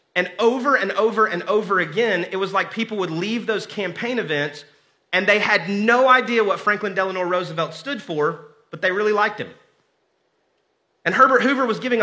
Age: 30-49